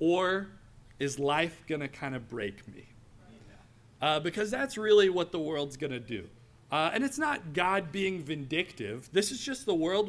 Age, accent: 40-59, American